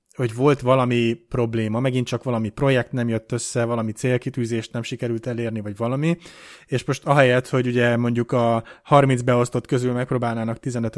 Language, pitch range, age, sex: Hungarian, 120-135 Hz, 20-39, male